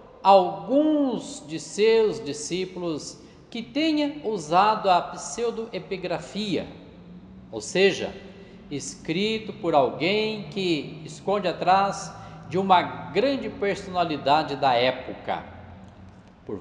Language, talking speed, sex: Portuguese, 85 wpm, male